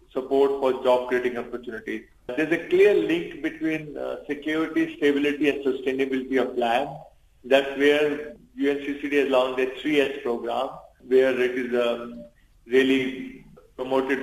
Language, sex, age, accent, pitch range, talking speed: English, male, 40-59, Indian, 125-150 Hz, 125 wpm